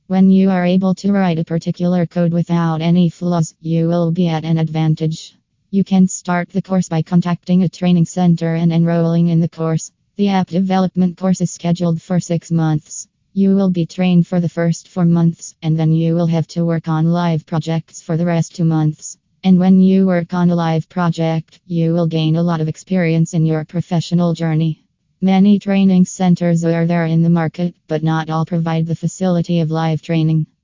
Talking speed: 200 wpm